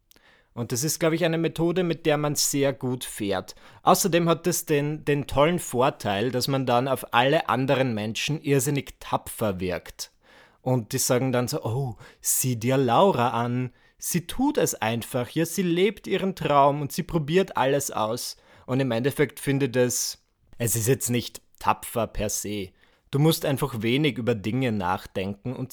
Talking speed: 175 wpm